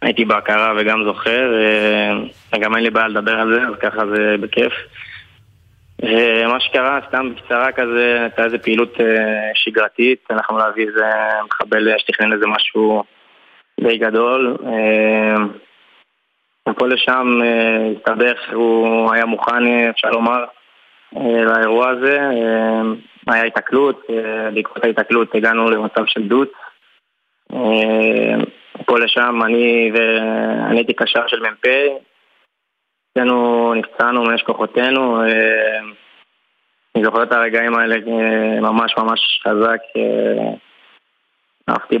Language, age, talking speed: Hebrew, 20-39, 100 wpm